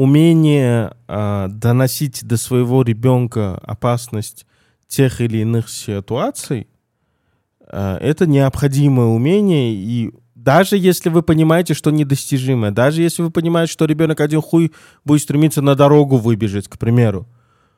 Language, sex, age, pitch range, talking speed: Russian, male, 20-39, 120-150 Hz, 120 wpm